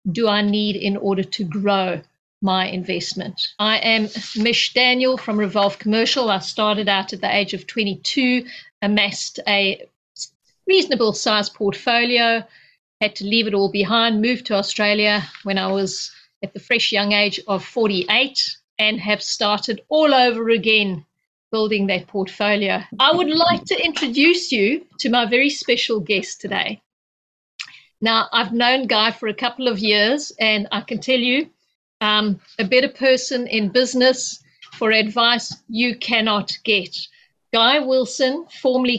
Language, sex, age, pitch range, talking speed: English, female, 50-69, 200-245 Hz, 150 wpm